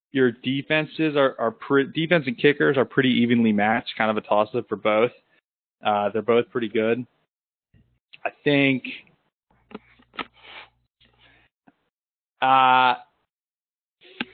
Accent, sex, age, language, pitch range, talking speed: American, male, 20-39, English, 110-150 Hz, 115 wpm